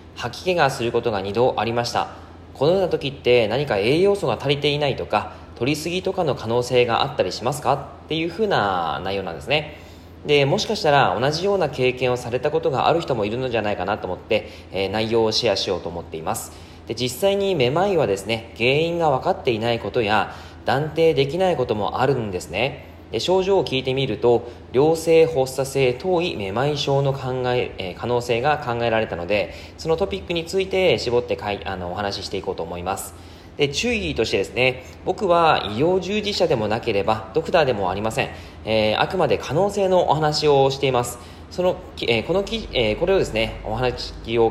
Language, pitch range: Japanese, 110-160 Hz